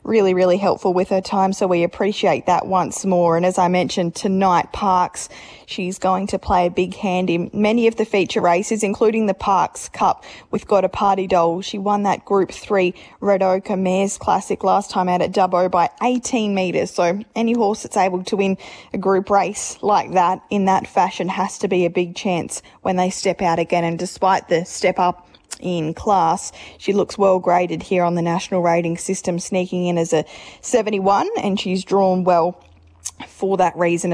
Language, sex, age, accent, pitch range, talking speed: English, female, 10-29, Australian, 180-205 Hz, 195 wpm